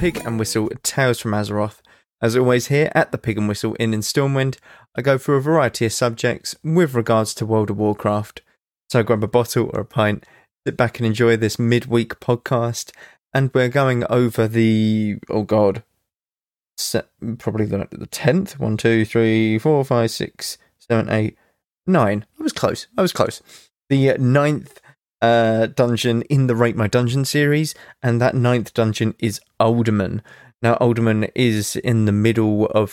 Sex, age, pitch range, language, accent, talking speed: male, 20-39, 110-130 Hz, English, British, 170 wpm